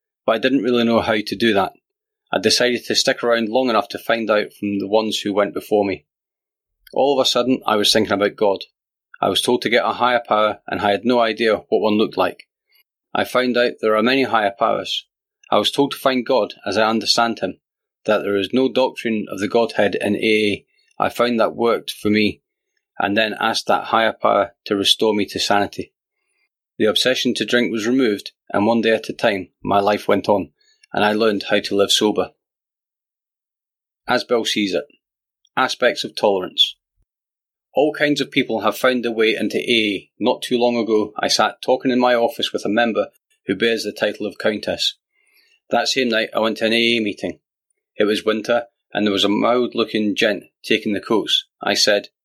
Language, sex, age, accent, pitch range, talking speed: English, male, 30-49, British, 105-125 Hz, 205 wpm